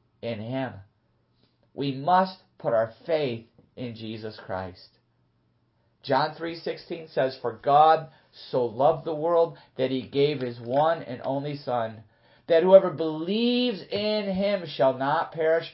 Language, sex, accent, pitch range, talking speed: English, male, American, 115-165 Hz, 135 wpm